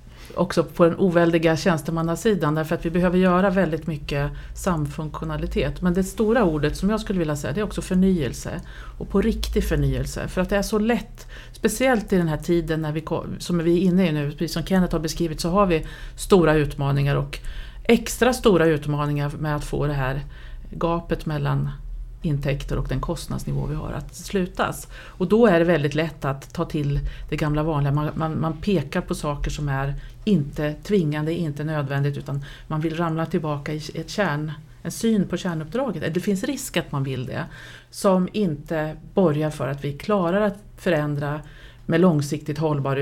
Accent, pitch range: Swedish, 145-180 Hz